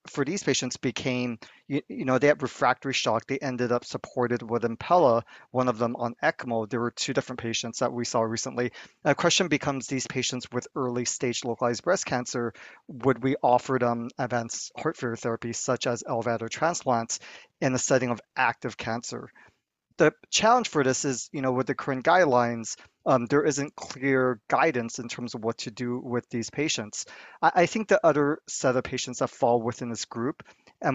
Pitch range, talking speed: 120-135 Hz, 195 wpm